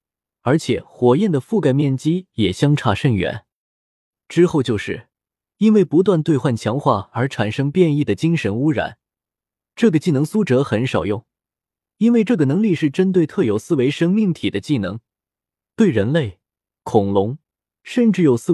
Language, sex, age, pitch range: Chinese, male, 20-39, 115-175 Hz